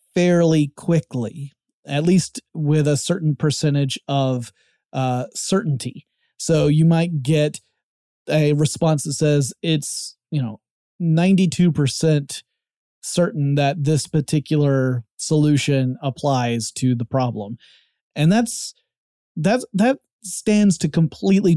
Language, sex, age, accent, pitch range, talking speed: English, male, 30-49, American, 140-170 Hz, 110 wpm